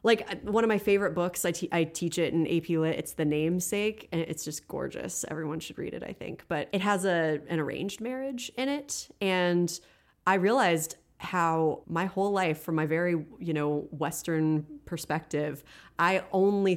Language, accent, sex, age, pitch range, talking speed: English, American, female, 30-49, 155-185 Hz, 185 wpm